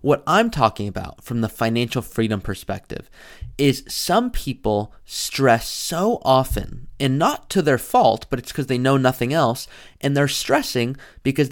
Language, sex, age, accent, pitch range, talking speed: English, male, 30-49, American, 115-150 Hz, 160 wpm